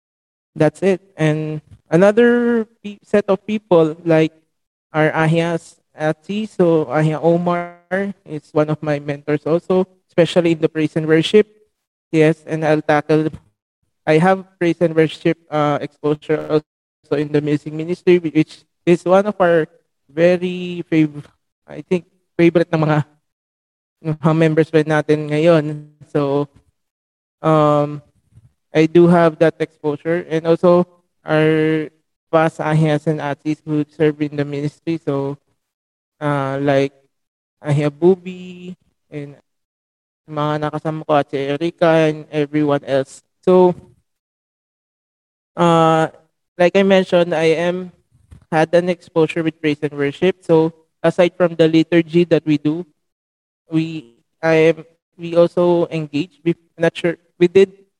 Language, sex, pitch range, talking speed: English, male, 150-170 Hz, 125 wpm